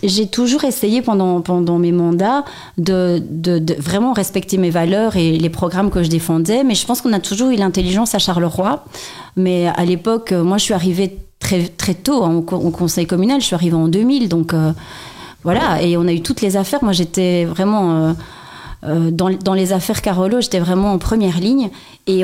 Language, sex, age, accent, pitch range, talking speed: French, female, 30-49, French, 175-225 Hz, 200 wpm